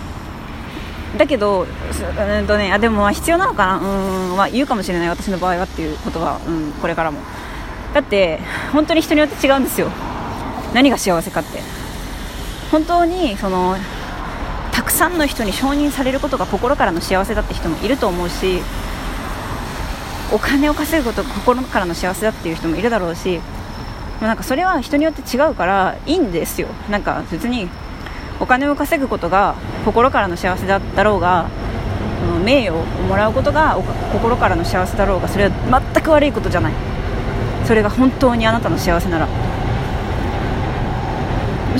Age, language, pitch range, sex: 20-39, Japanese, 165-270 Hz, female